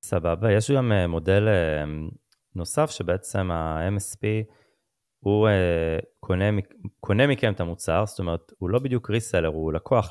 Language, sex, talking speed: Hebrew, male, 125 wpm